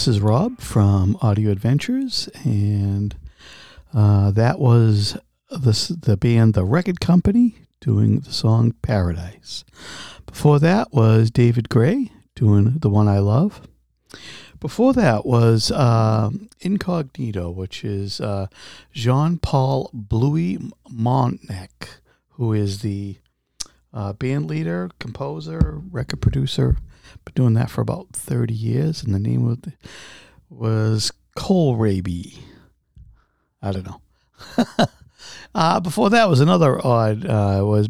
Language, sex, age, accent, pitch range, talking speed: English, male, 50-69, American, 105-150 Hz, 120 wpm